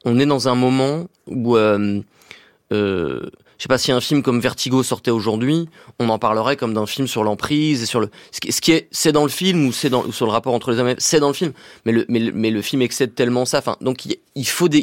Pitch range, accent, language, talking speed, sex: 115-145 Hz, French, French, 265 wpm, male